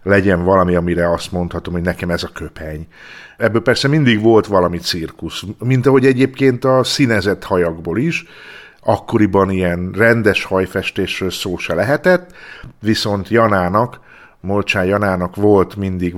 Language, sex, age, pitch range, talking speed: Hungarian, male, 50-69, 90-115 Hz, 135 wpm